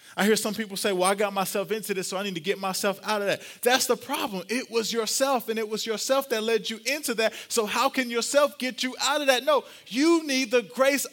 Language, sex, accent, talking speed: English, male, American, 265 wpm